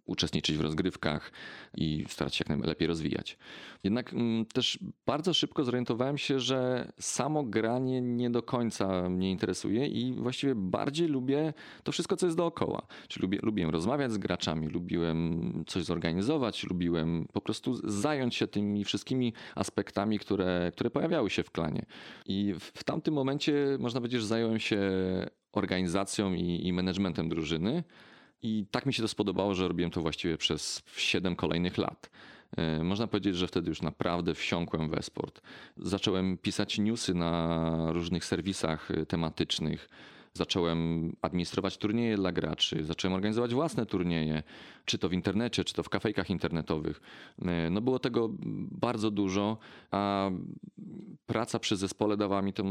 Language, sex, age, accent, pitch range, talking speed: Polish, male, 30-49, native, 85-120 Hz, 150 wpm